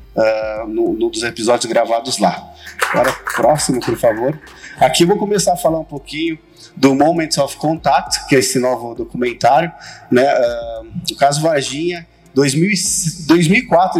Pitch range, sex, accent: 130-165 Hz, male, Brazilian